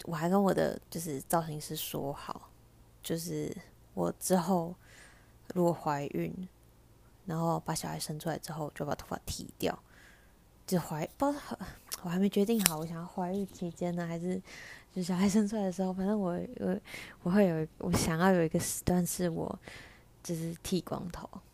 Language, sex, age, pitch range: Chinese, female, 20-39, 155-190 Hz